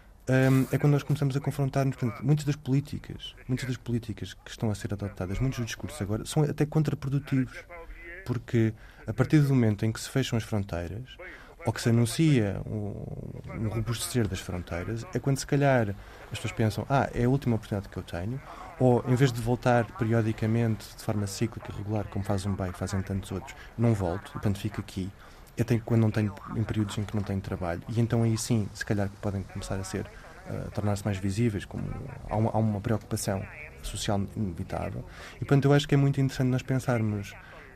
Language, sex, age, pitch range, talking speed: Portuguese, male, 20-39, 105-135 Hz, 195 wpm